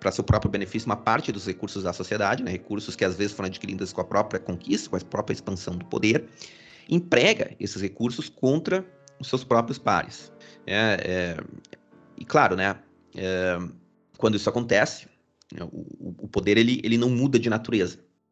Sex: male